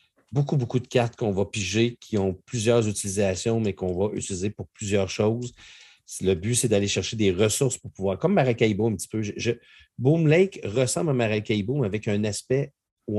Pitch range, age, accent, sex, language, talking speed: 100-125 Hz, 50-69, Canadian, male, French, 200 wpm